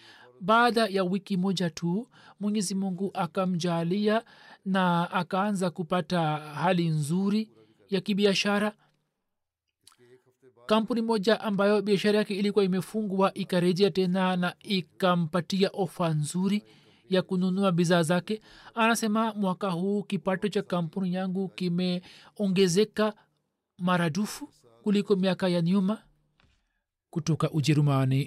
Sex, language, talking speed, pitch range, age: male, Swahili, 100 wpm, 145-190 Hz, 40-59